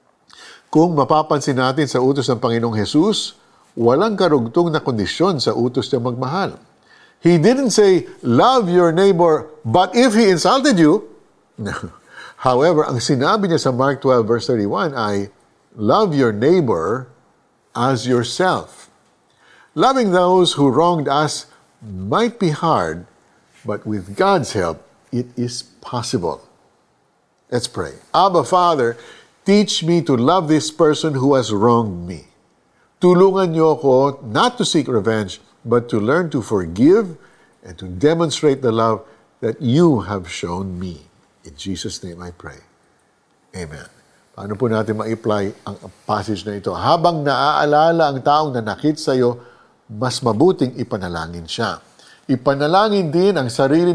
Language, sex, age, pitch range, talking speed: Filipino, male, 50-69, 110-165 Hz, 140 wpm